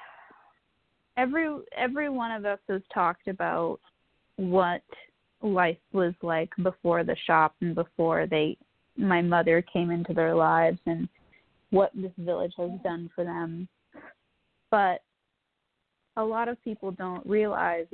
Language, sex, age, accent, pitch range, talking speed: English, female, 20-39, American, 170-205 Hz, 130 wpm